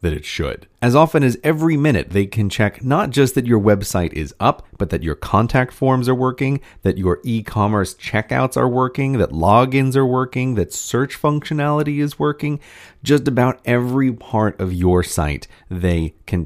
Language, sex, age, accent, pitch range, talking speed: English, male, 30-49, American, 90-130 Hz, 180 wpm